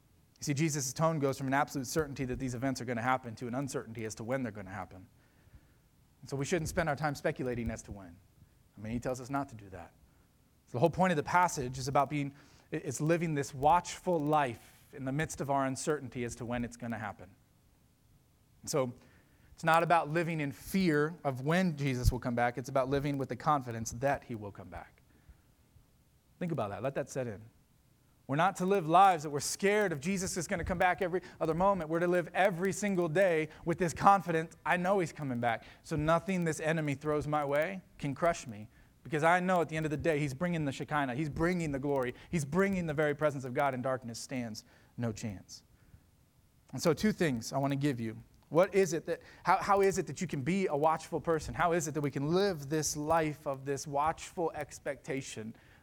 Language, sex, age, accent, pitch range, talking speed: English, male, 30-49, American, 125-165 Hz, 225 wpm